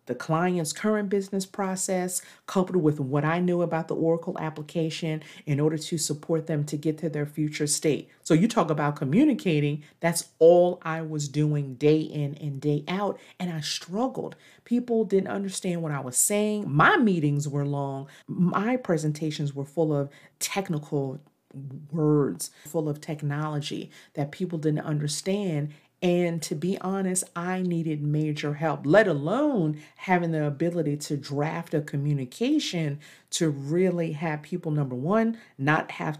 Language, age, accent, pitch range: English, 40-59, American, 150-185 Hz